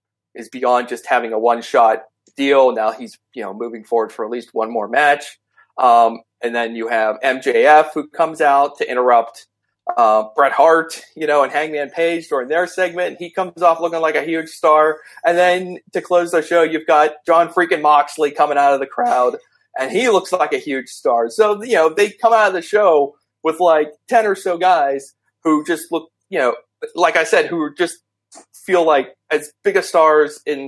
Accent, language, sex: American, English, male